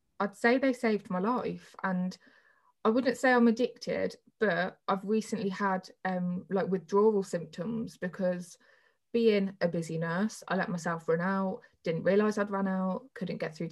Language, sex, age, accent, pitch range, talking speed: English, female, 20-39, British, 185-225 Hz, 165 wpm